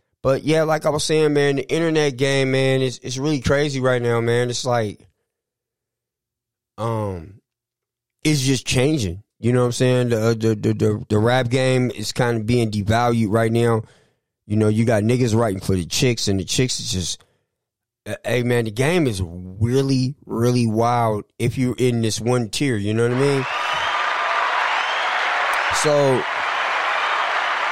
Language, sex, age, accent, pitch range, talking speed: English, male, 30-49, American, 110-130 Hz, 170 wpm